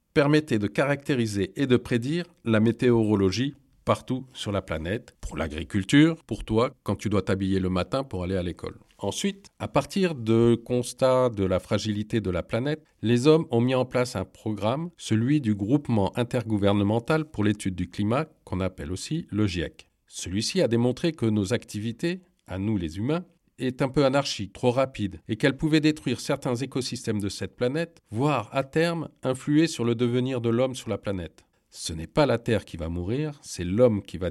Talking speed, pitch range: 185 wpm, 100-150 Hz